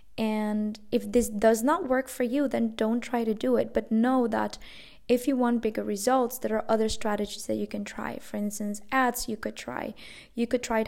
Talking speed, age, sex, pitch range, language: 215 wpm, 20-39, female, 215-245 Hz, English